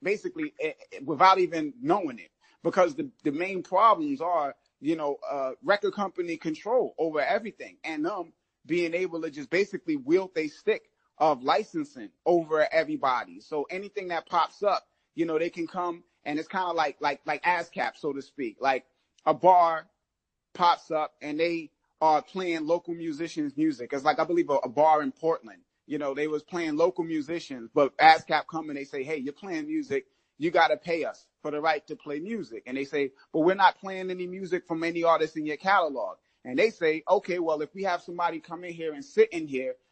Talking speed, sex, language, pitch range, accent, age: 205 wpm, male, English, 155-185 Hz, American, 30-49